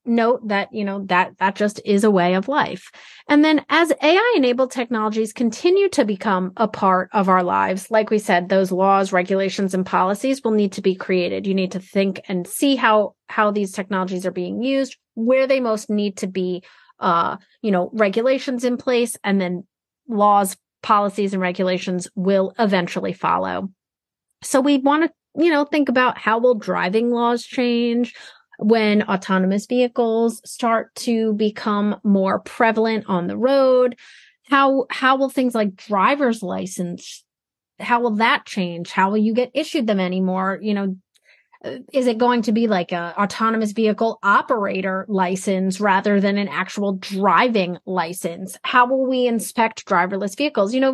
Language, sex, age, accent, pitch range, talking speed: English, female, 30-49, American, 195-250 Hz, 165 wpm